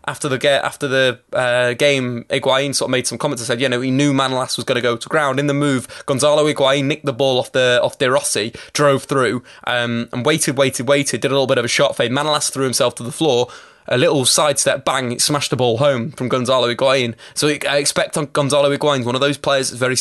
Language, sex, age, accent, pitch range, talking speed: English, male, 20-39, British, 125-150 Hz, 250 wpm